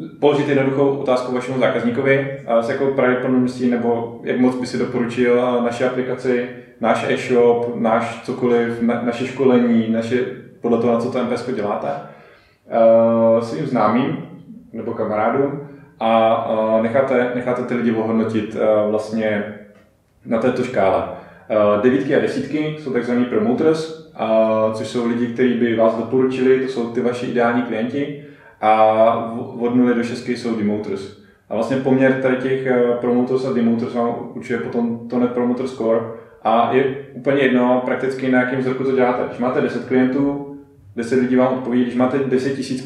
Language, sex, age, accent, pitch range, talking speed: Czech, male, 20-39, native, 115-130 Hz, 150 wpm